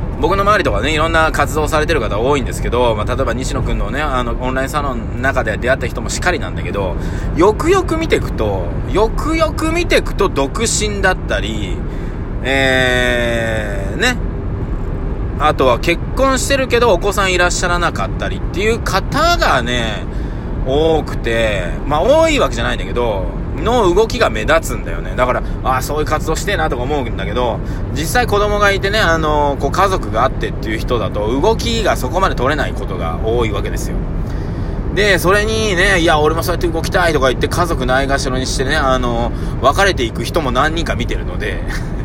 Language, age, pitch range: Japanese, 20-39, 110-155 Hz